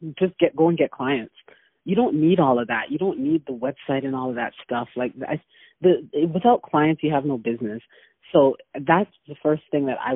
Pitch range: 130-160 Hz